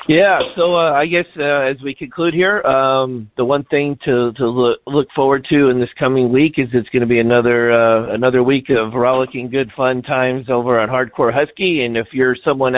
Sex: male